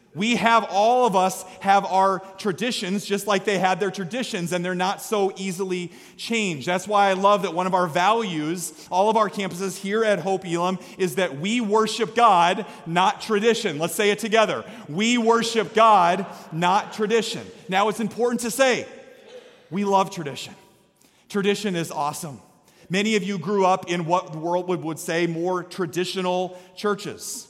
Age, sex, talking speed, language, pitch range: 30-49, male, 170 wpm, English, 180-210 Hz